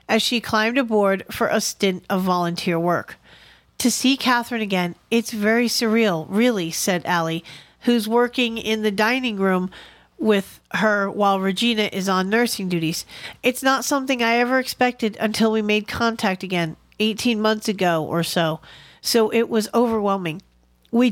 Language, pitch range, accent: English, 185-225 Hz, American